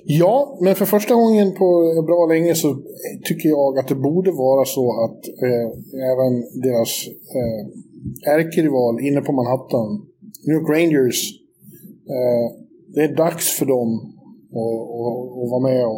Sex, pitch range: male, 130-170 Hz